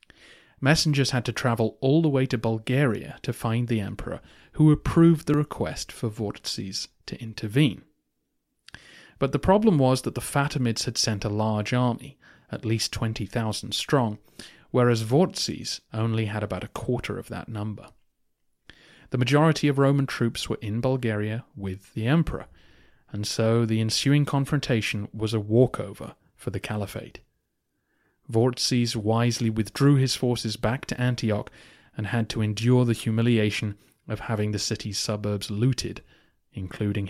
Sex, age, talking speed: male, 30-49, 145 wpm